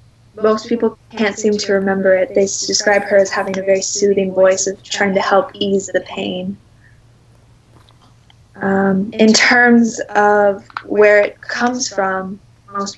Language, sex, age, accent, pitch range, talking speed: English, female, 20-39, American, 185-205 Hz, 150 wpm